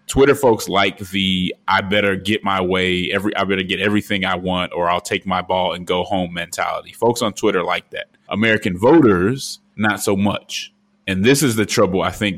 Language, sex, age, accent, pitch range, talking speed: English, male, 30-49, American, 95-105 Hz, 205 wpm